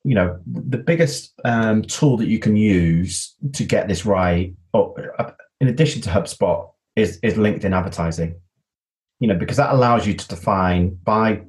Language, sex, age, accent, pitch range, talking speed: English, male, 30-49, British, 90-110 Hz, 170 wpm